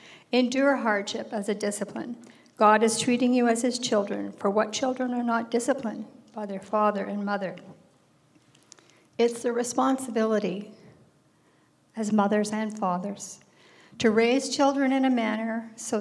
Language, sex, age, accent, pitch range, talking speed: English, female, 60-79, American, 210-245 Hz, 140 wpm